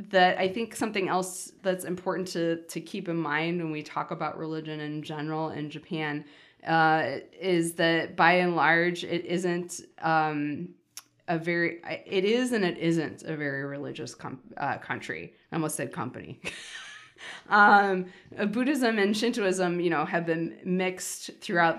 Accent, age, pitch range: American, 20-39, 155-180 Hz